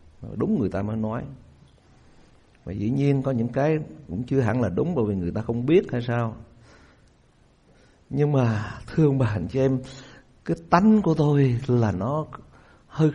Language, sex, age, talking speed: Vietnamese, male, 60-79, 170 wpm